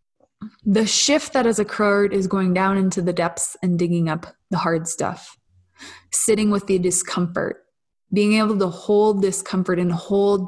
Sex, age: female, 20-39